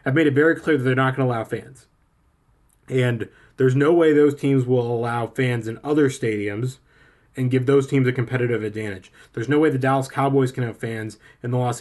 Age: 20-39